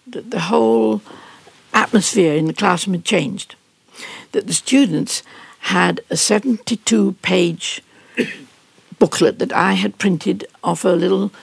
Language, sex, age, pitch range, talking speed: English, female, 60-79, 170-225 Hz, 120 wpm